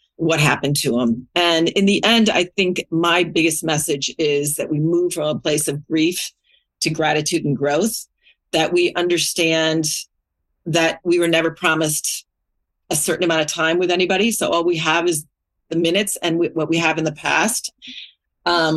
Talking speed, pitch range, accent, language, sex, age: 180 wpm, 155-190 Hz, American, English, female, 40-59